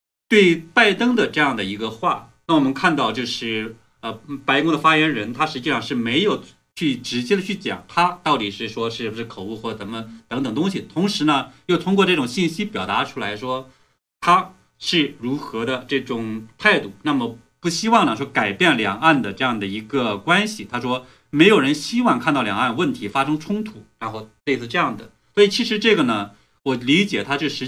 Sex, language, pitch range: male, Chinese, 120-195 Hz